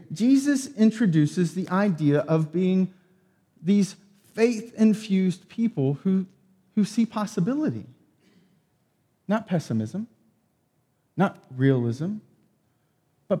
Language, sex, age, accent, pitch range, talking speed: English, male, 40-59, American, 160-230 Hz, 80 wpm